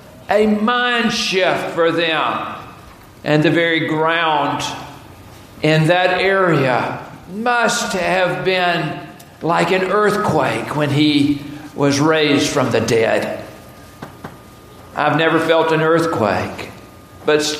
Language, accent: English, American